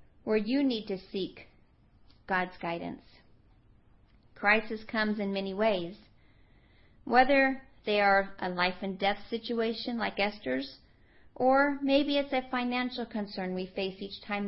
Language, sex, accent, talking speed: English, female, American, 135 wpm